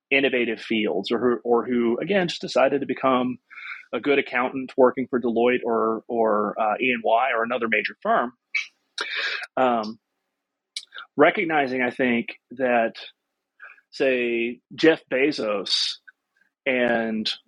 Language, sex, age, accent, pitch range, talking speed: English, male, 30-49, American, 120-140 Hz, 115 wpm